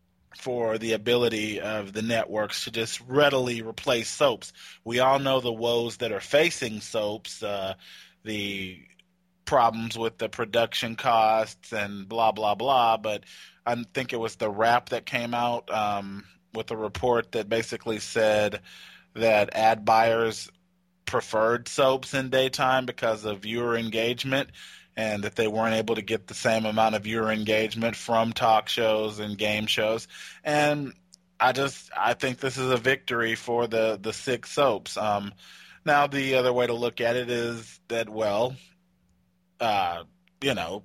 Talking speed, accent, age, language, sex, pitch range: 155 wpm, American, 20-39, English, male, 110-125 Hz